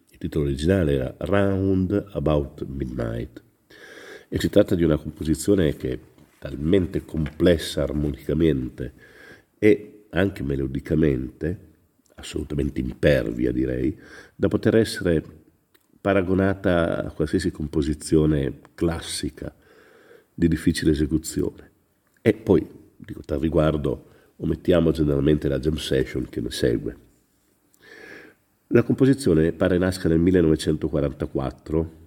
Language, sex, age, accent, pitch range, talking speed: Italian, male, 50-69, native, 70-95 Hz, 100 wpm